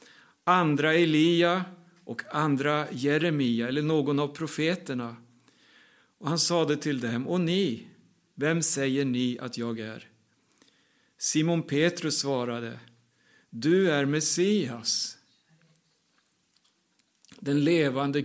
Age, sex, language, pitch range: 60-79, male, Swedish, 130-165 Hz